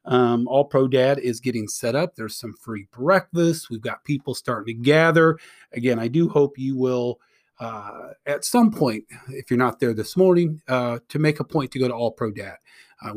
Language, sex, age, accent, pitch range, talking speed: English, male, 40-59, American, 120-155 Hz, 210 wpm